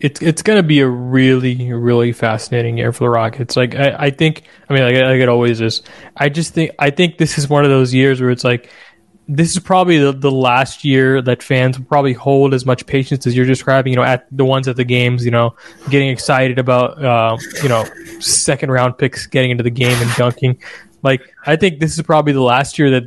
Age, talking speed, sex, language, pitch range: 20-39, 240 wpm, male, English, 125-155 Hz